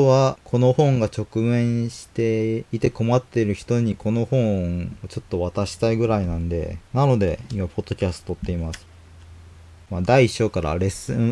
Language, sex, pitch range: Japanese, male, 100-150 Hz